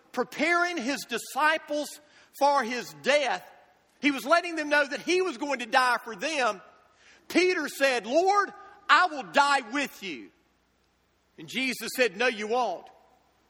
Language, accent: English, American